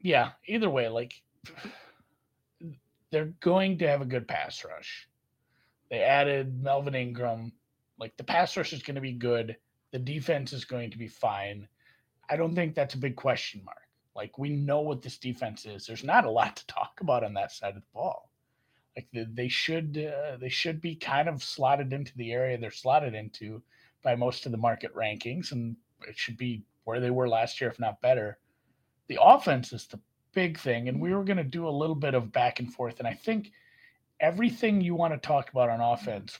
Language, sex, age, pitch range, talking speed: English, male, 30-49, 115-140 Hz, 200 wpm